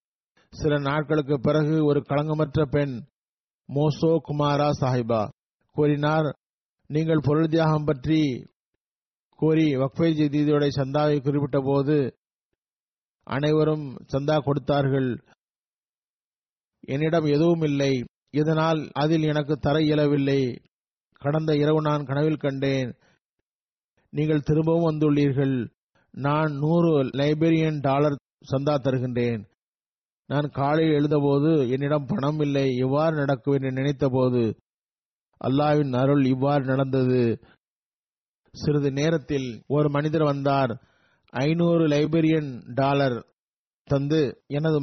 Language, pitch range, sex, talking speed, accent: Tamil, 135-155 Hz, male, 85 wpm, native